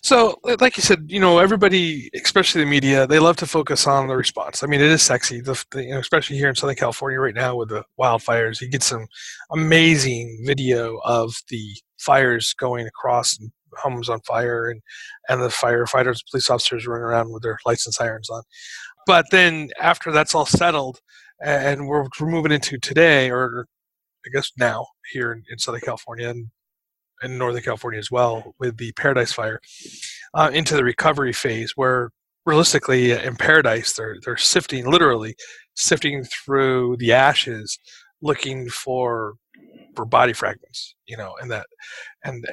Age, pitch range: 30-49, 120-155 Hz